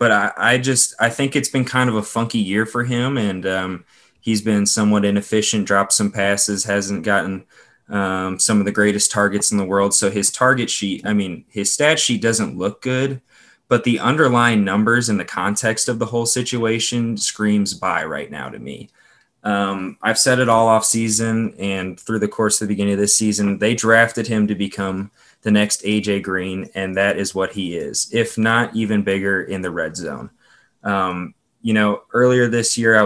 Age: 20-39